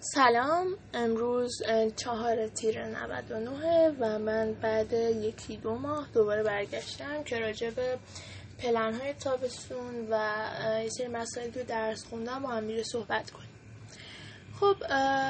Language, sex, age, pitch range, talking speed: Persian, female, 10-29, 225-280 Hz, 120 wpm